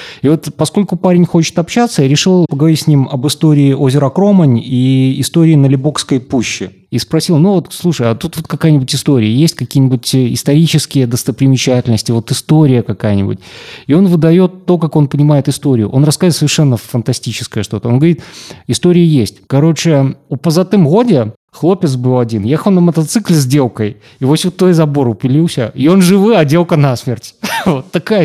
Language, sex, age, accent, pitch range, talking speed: Russian, male, 20-39, native, 130-165 Hz, 165 wpm